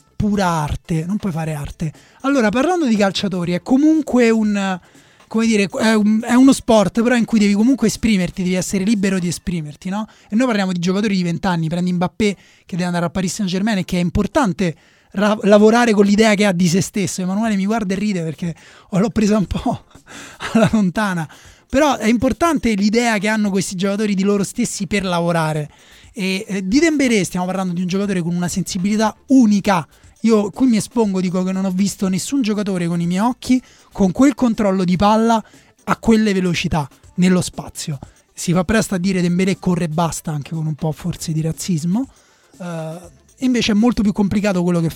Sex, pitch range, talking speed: male, 180-225 Hz, 200 wpm